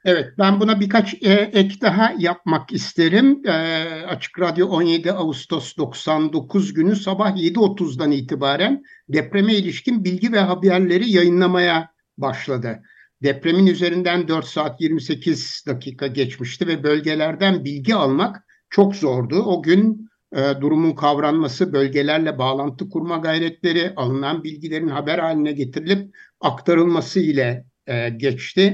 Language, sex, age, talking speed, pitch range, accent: Turkish, male, 60-79, 115 wpm, 140-185 Hz, native